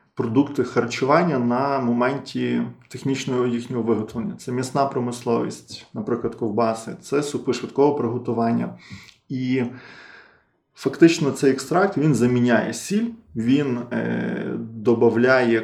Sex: male